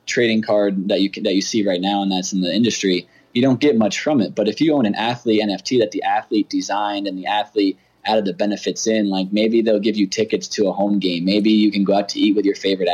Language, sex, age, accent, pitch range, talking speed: English, male, 20-39, American, 100-115 Hz, 275 wpm